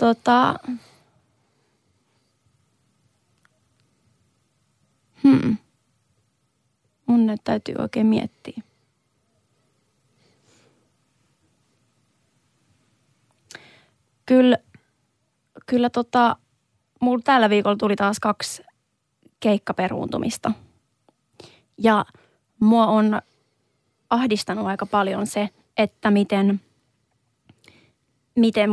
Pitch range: 190-225 Hz